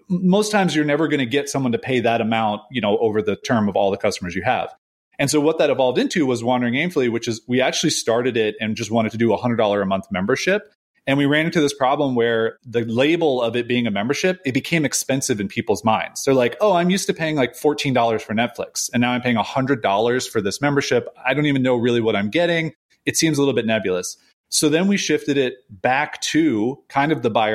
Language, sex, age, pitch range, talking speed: English, male, 30-49, 120-160 Hz, 245 wpm